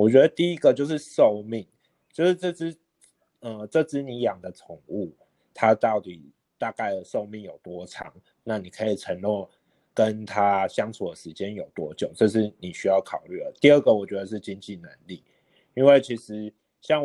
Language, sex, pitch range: Chinese, male, 95-115 Hz